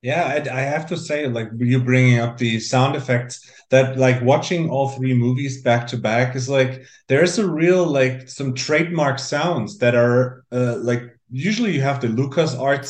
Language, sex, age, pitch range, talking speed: English, male, 30-49, 120-135 Hz, 195 wpm